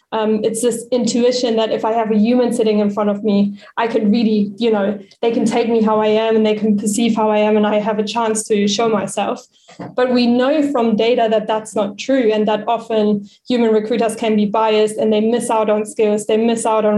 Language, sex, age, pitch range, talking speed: English, female, 20-39, 210-235 Hz, 245 wpm